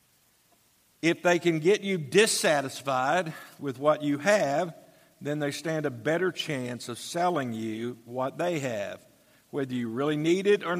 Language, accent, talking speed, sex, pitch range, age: English, American, 155 wpm, male, 130-160 Hz, 50-69